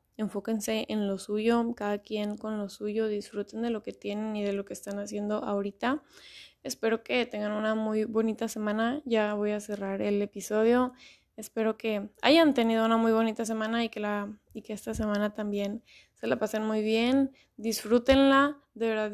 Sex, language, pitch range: female, Spanish, 210-235 Hz